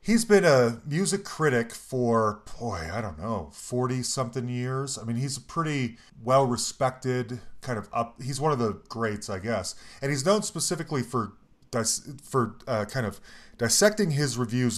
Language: English